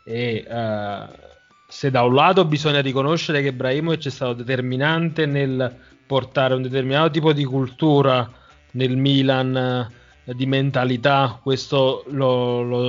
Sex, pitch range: male, 120-140 Hz